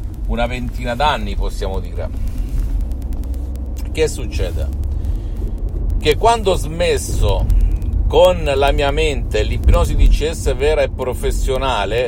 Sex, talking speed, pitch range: male, 105 wpm, 90-120 Hz